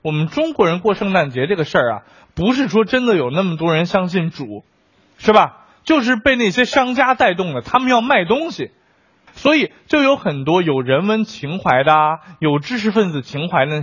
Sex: male